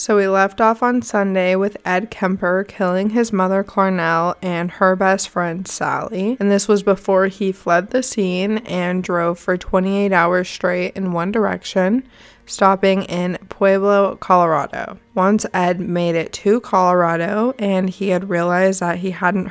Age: 20-39